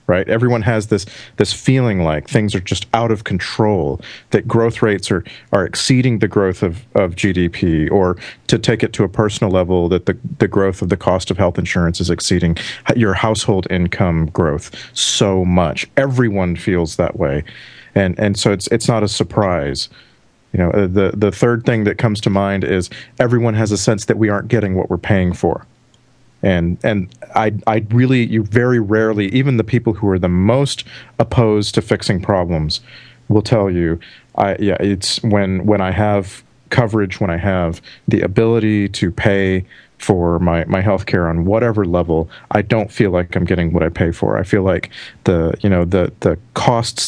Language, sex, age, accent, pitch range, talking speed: English, male, 40-59, American, 90-115 Hz, 190 wpm